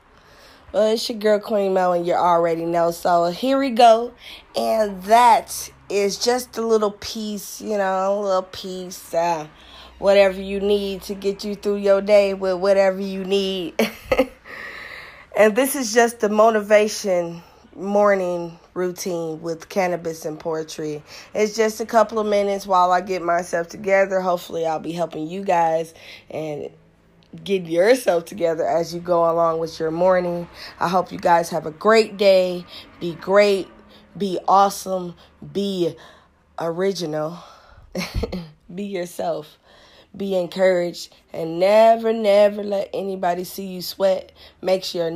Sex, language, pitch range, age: female, English, 170-205 Hz, 20-39